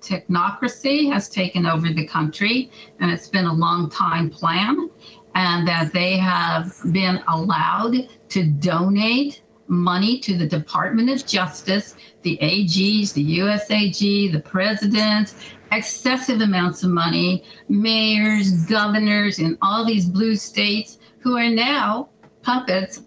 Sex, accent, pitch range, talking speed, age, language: female, American, 175-225 Hz, 125 wpm, 50-69, English